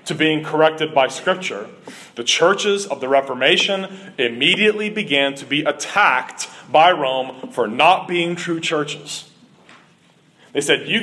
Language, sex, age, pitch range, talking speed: English, male, 30-49, 155-195 Hz, 135 wpm